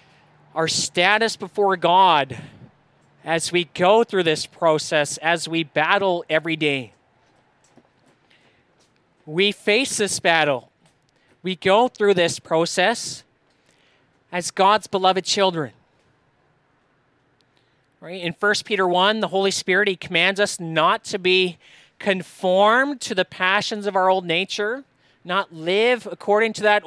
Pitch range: 160-220 Hz